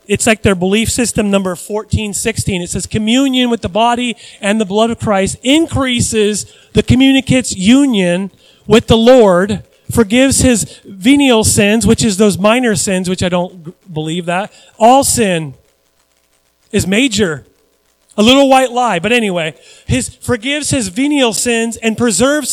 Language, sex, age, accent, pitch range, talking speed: Finnish, male, 30-49, American, 180-240 Hz, 150 wpm